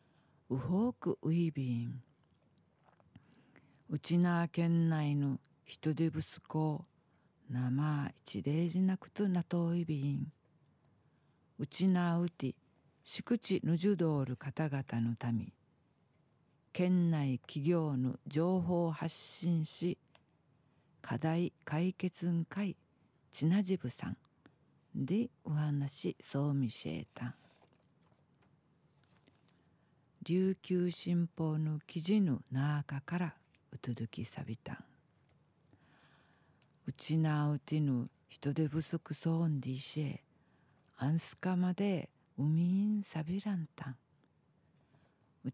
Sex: female